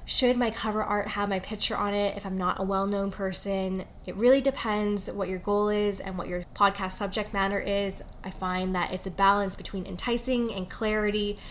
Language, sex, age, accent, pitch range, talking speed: English, female, 20-39, American, 190-210 Hz, 205 wpm